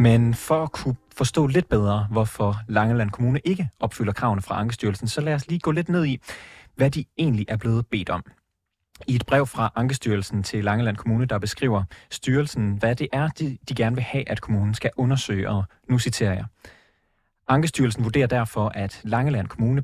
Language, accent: Danish, native